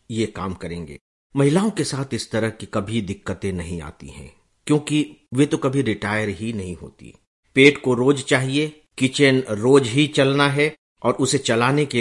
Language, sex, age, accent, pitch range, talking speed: English, male, 50-69, Indian, 110-160 Hz, 175 wpm